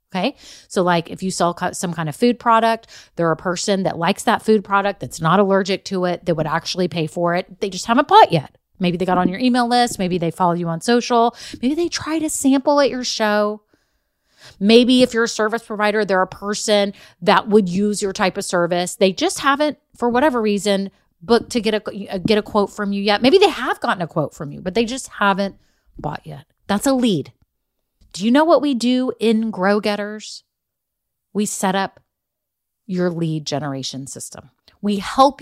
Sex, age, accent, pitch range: female, 30-49, American, 185-245 Hz